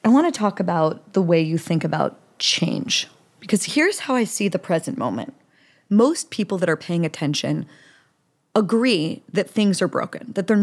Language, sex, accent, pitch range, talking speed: English, female, American, 180-255 Hz, 180 wpm